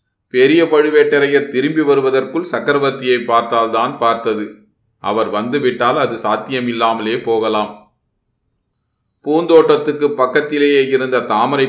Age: 30-49